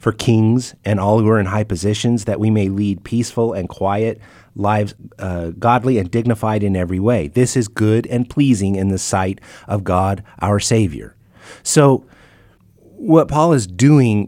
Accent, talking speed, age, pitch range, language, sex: American, 170 wpm, 30-49, 100-120 Hz, English, male